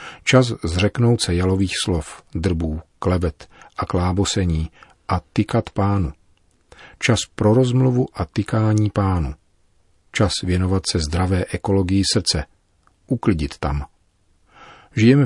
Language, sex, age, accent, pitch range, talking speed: Czech, male, 40-59, native, 85-105 Hz, 105 wpm